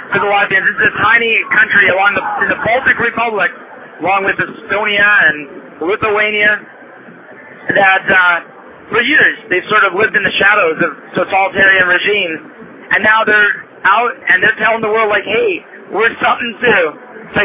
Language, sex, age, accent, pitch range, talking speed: English, male, 40-59, American, 180-225 Hz, 155 wpm